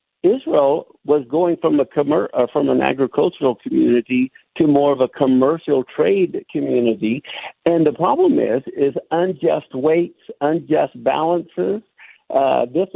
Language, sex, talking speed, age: English, male, 130 wpm, 60-79